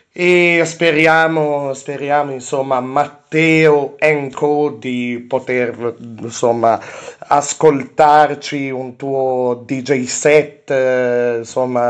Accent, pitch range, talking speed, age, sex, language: native, 135-175 Hz, 75 wpm, 30-49, male, Italian